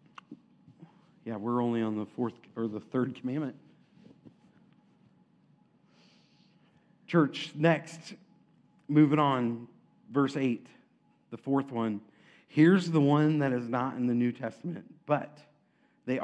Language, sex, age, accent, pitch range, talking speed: English, male, 50-69, American, 120-160 Hz, 115 wpm